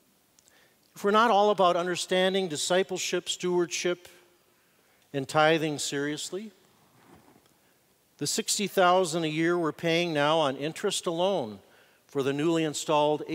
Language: English